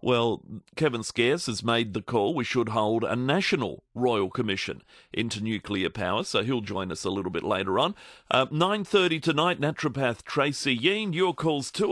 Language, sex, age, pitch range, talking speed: English, male, 40-59, 110-135 Hz, 180 wpm